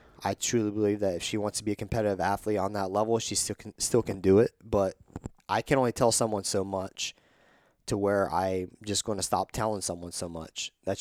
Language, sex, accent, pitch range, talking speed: English, male, American, 95-115 Hz, 225 wpm